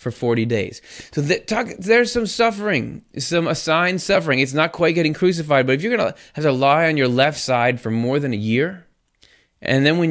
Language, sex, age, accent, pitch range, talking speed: English, male, 20-39, American, 110-145 Hz, 220 wpm